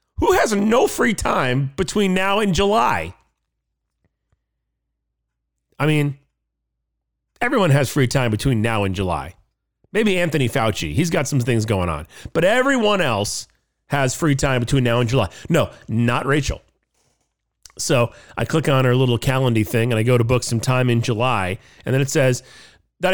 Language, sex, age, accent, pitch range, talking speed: English, male, 40-59, American, 105-160 Hz, 160 wpm